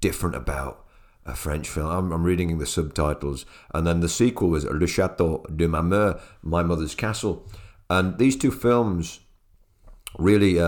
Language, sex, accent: English, male, British